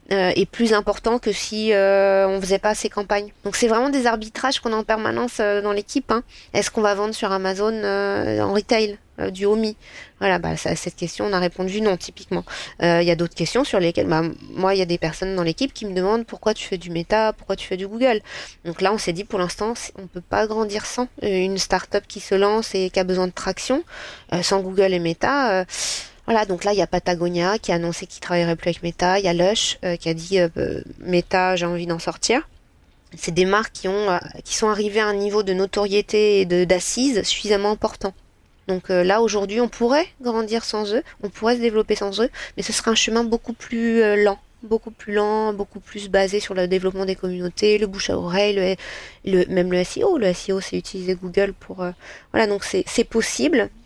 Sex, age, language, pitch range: female, 20-39, French, 185-220 Hz